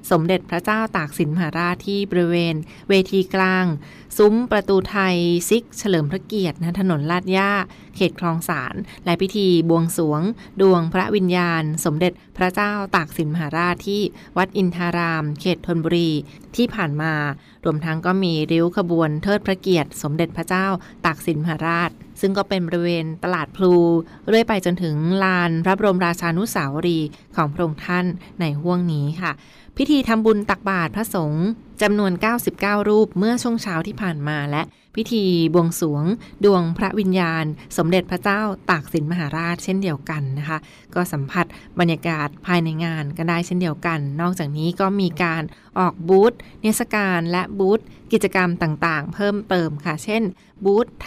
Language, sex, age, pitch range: Thai, female, 20-39, 165-195 Hz